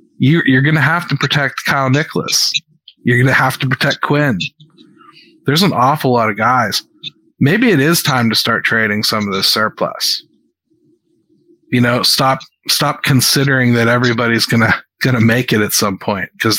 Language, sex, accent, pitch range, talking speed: English, male, American, 125-170 Hz, 175 wpm